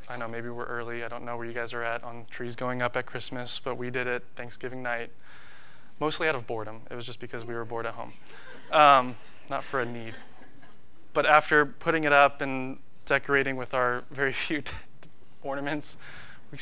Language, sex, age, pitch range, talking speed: English, male, 20-39, 125-170 Hz, 200 wpm